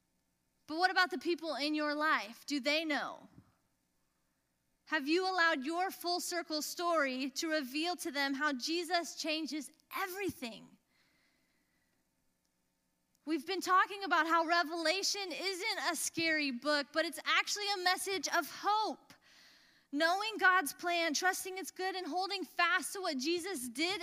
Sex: female